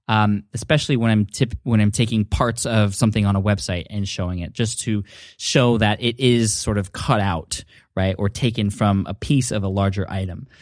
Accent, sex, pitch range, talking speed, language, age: American, male, 100-125 Hz, 200 wpm, English, 20-39